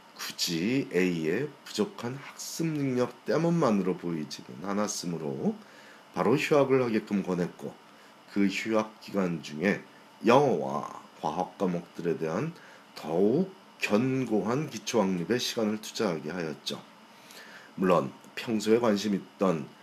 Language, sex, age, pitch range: Korean, male, 40-59, 85-110 Hz